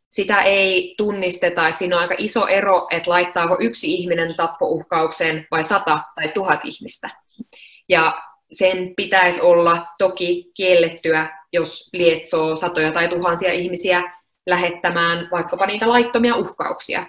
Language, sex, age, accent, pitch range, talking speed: Finnish, female, 20-39, native, 160-190 Hz, 125 wpm